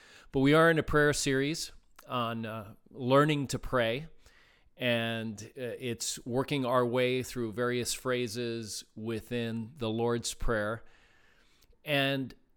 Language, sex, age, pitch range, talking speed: English, male, 40-59, 110-135 Hz, 125 wpm